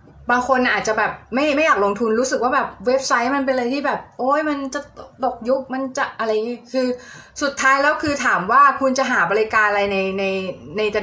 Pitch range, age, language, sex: 205-265 Hz, 20-39, Thai, female